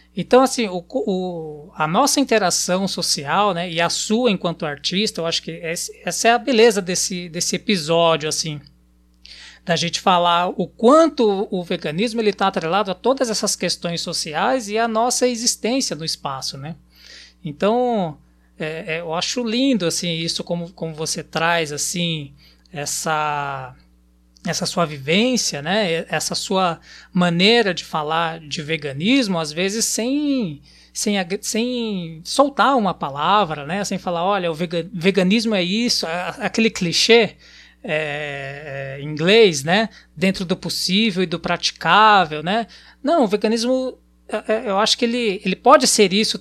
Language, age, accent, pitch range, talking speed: Portuguese, 20-39, Brazilian, 160-220 Hz, 135 wpm